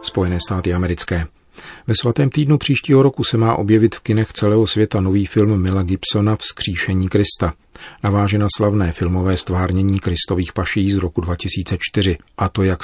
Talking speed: 155 wpm